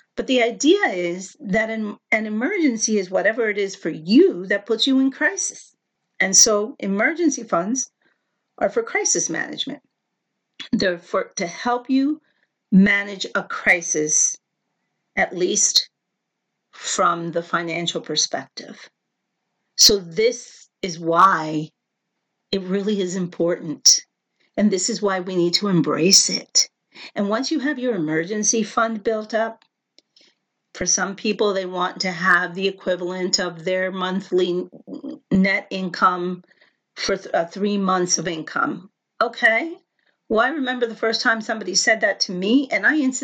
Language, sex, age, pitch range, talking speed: English, female, 50-69, 185-255 Hz, 140 wpm